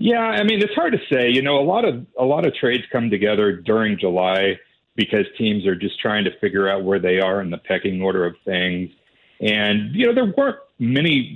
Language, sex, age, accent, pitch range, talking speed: English, male, 50-69, American, 95-150 Hz, 225 wpm